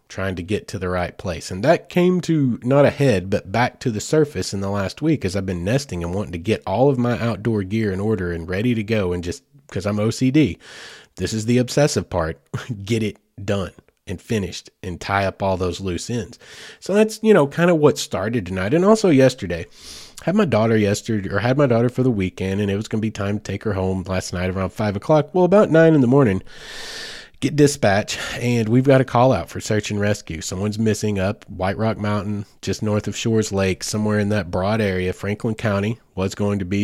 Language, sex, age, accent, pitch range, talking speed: English, male, 30-49, American, 95-120 Hz, 230 wpm